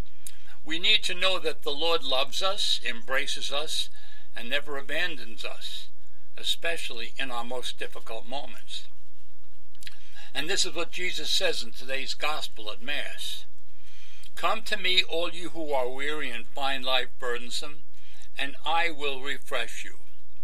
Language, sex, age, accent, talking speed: English, male, 60-79, American, 145 wpm